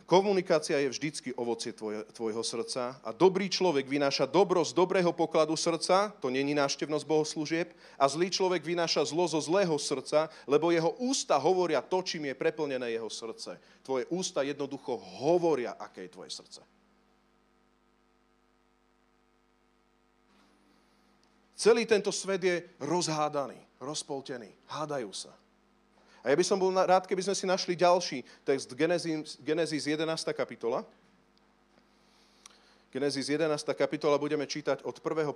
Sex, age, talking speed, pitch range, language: male, 40-59, 130 wpm, 135-180 Hz, Slovak